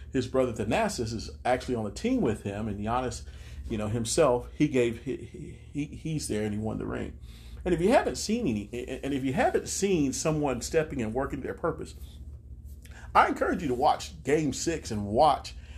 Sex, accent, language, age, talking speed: male, American, English, 40-59, 200 wpm